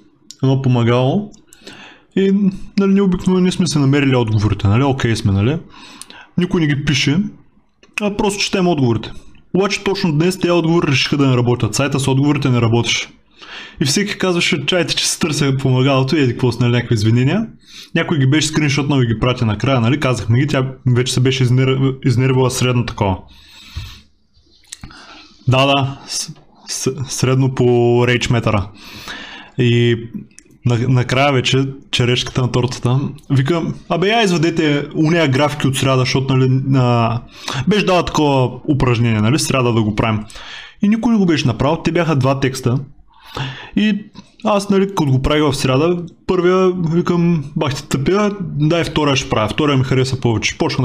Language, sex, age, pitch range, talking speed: Bulgarian, male, 20-39, 125-170 Hz, 160 wpm